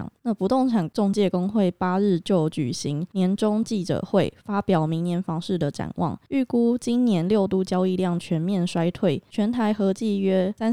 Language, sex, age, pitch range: Chinese, female, 20-39, 170-205 Hz